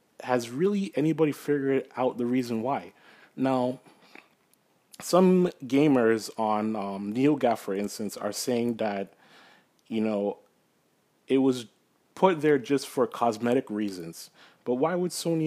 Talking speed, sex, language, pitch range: 130 wpm, male, English, 115-155 Hz